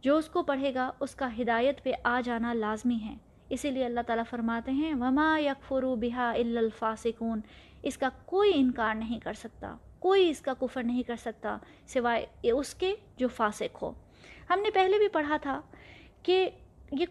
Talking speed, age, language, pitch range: 180 wpm, 20-39, Urdu, 245-305 Hz